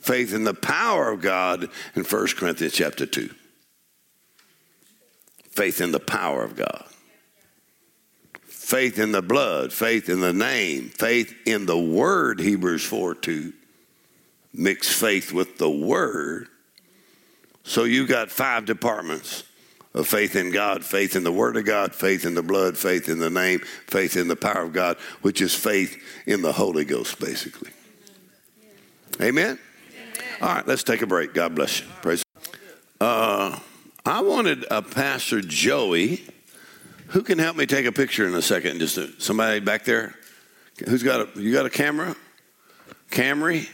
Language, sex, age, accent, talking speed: English, male, 60-79, American, 155 wpm